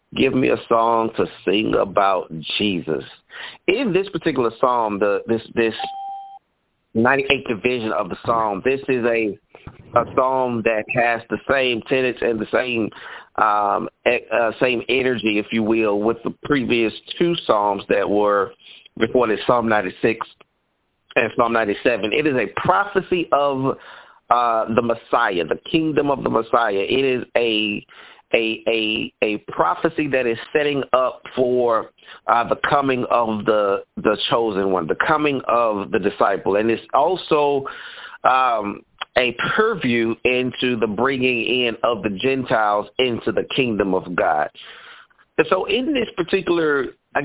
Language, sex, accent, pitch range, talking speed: English, male, American, 115-155 Hz, 145 wpm